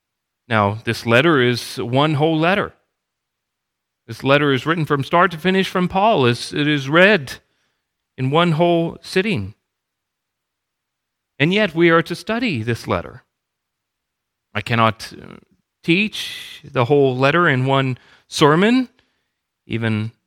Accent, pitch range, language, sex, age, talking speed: American, 125-165 Hz, English, male, 40-59, 125 wpm